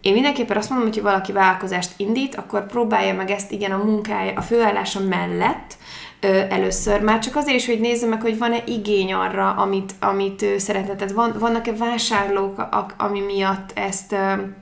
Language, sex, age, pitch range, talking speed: Hungarian, female, 20-39, 190-215 Hz, 160 wpm